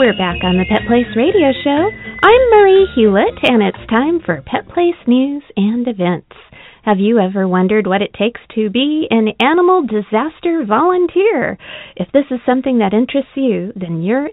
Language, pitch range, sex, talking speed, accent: English, 200-310 Hz, female, 175 wpm, American